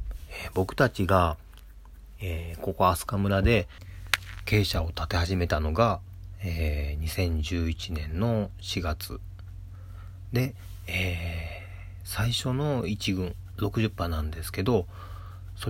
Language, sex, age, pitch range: Japanese, male, 40-59, 85-100 Hz